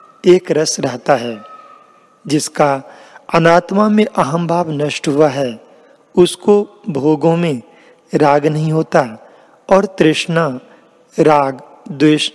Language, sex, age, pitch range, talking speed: Hindi, male, 40-59, 145-180 Hz, 105 wpm